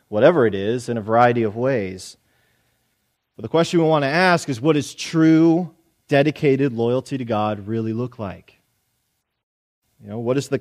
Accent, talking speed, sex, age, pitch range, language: American, 175 wpm, male, 30-49, 115-145 Hz, English